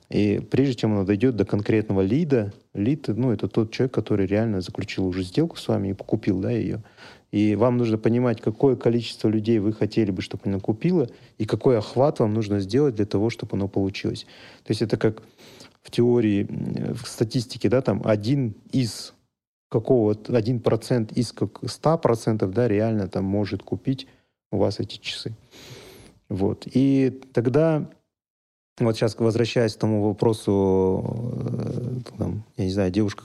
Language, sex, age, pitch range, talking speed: Russian, male, 30-49, 105-125 Hz, 160 wpm